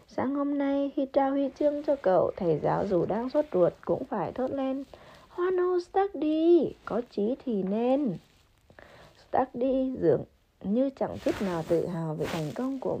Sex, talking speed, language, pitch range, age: female, 195 wpm, Vietnamese, 195-280 Hz, 20-39